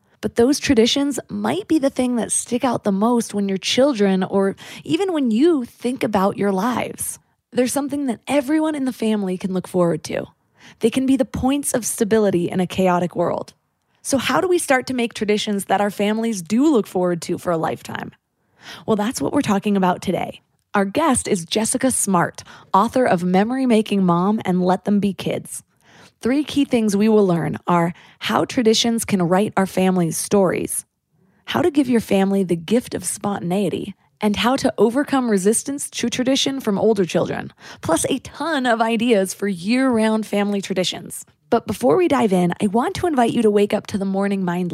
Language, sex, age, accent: English, female, 20-39, American